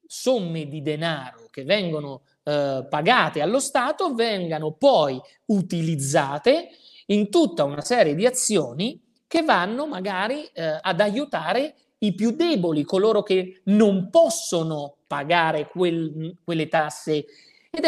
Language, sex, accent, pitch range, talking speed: Italian, male, native, 155-255 Hz, 115 wpm